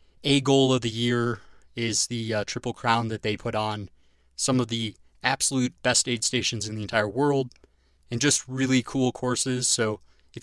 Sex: male